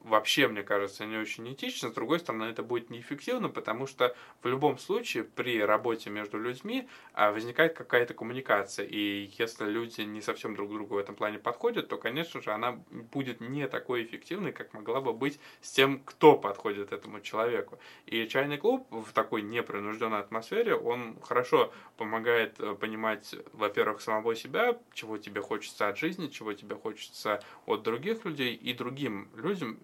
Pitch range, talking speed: 105-135 Hz, 165 wpm